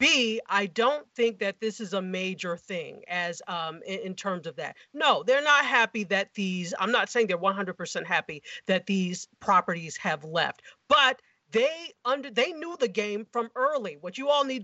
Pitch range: 195-255 Hz